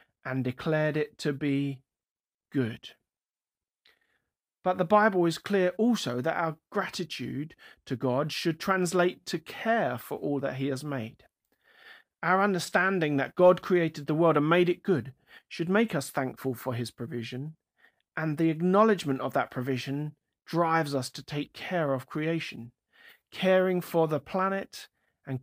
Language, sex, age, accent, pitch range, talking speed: English, male, 40-59, British, 130-175 Hz, 150 wpm